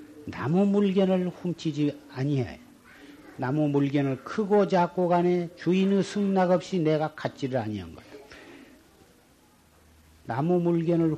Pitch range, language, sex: 130-175 Hz, Korean, male